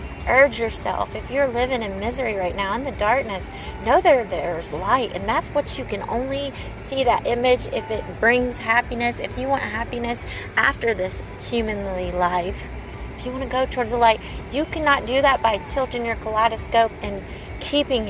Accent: American